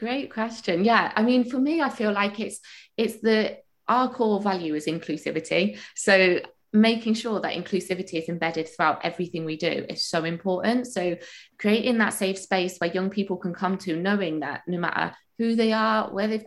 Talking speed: 190 wpm